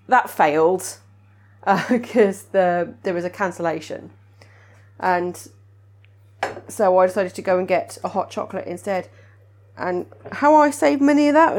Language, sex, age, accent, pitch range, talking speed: English, female, 30-49, British, 155-255 Hz, 145 wpm